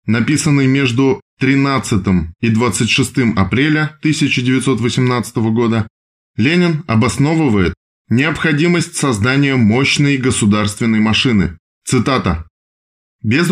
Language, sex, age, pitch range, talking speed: Russian, male, 20-39, 105-145 Hz, 75 wpm